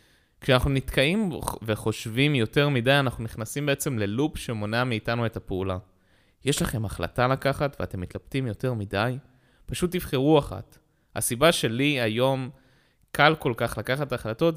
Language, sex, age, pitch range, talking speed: Hebrew, male, 20-39, 100-140 Hz, 130 wpm